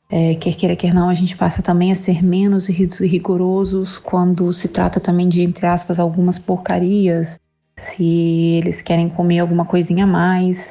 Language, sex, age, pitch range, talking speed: Portuguese, female, 20-39, 165-180 Hz, 170 wpm